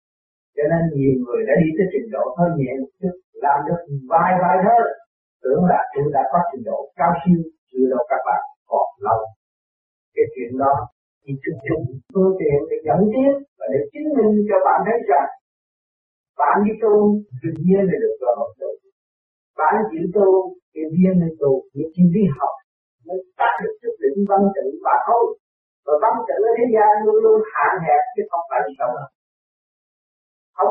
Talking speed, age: 185 wpm, 50-69